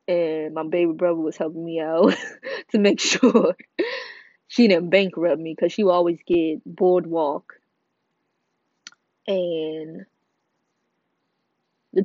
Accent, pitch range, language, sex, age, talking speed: American, 170-200 Hz, English, female, 20-39, 115 wpm